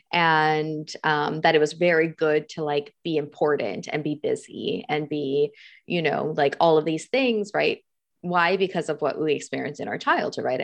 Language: English